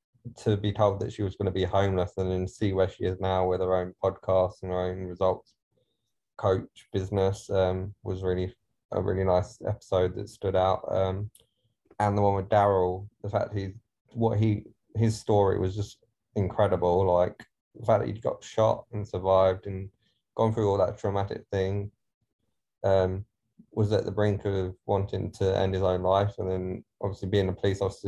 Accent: British